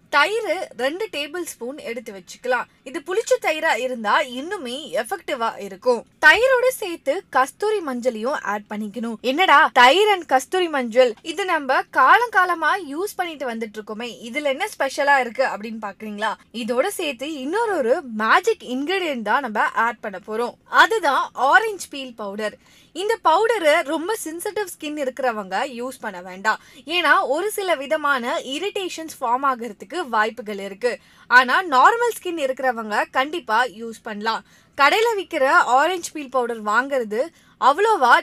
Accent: native